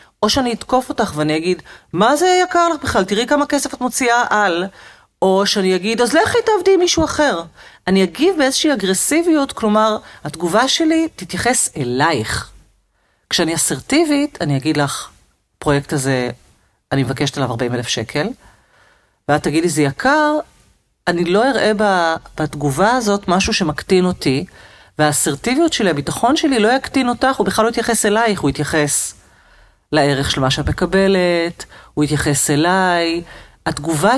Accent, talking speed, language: native, 145 wpm, Hebrew